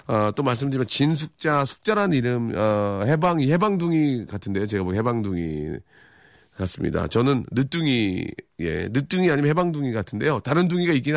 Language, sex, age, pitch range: Korean, male, 40-59, 105-160 Hz